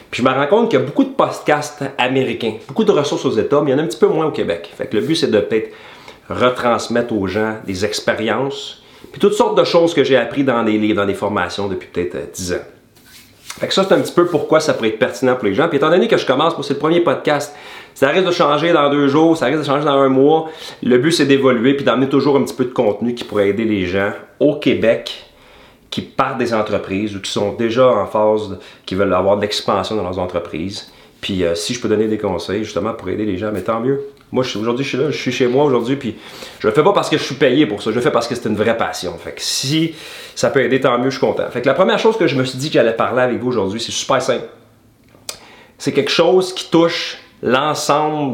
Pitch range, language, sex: 105-150 Hz, French, male